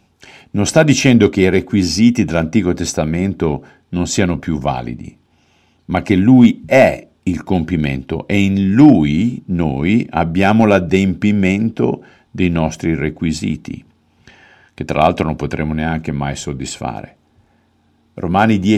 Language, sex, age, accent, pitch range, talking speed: Italian, male, 50-69, native, 80-105 Hz, 115 wpm